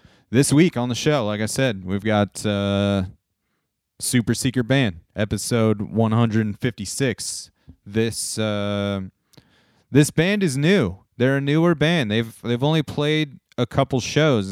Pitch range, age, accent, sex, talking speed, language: 105-140 Hz, 30-49, American, male, 135 wpm, English